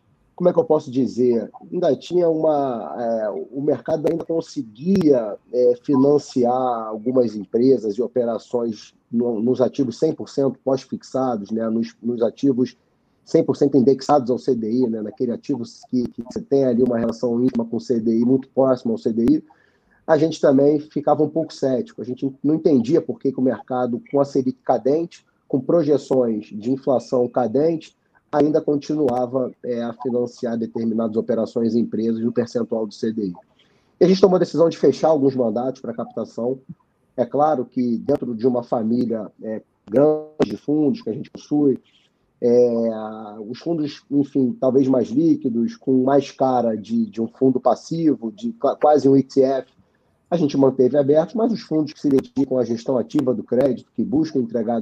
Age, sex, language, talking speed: 30-49, male, Portuguese, 165 wpm